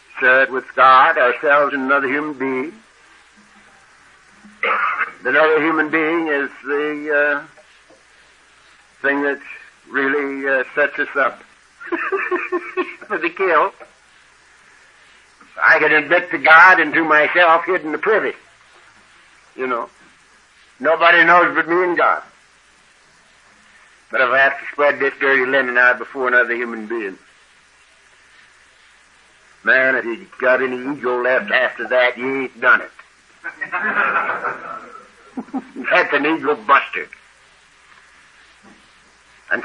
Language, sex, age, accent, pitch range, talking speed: English, male, 60-79, American, 130-160 Hz, 115 wpm